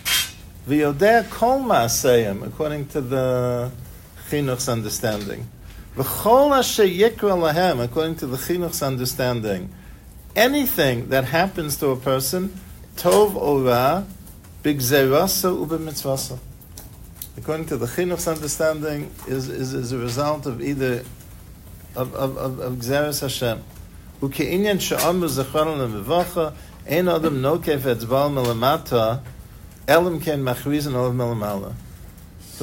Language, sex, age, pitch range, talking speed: English, male, 50-69, 110-150 Hz, 70 wpm